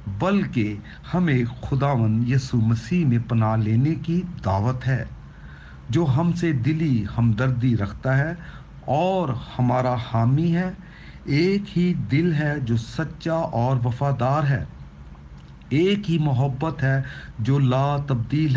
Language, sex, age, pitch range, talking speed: Urdu, male, 50-69, 120-155 Hz, 125 wpm